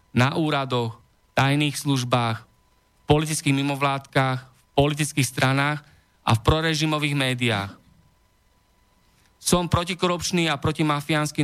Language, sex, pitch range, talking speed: Slovak, male, 125-150 Hz, 95 wpm